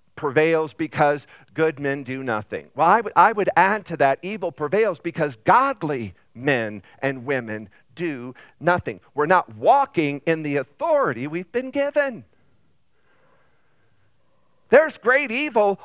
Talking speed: 135 wpm